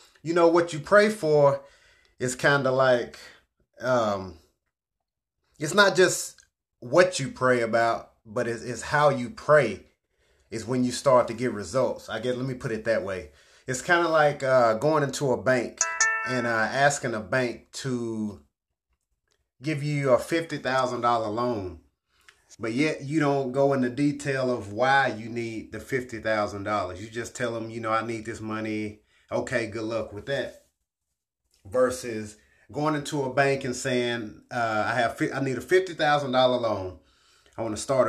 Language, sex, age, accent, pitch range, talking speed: English, male, 30-49, American, 115-150 Hz, 165 wpm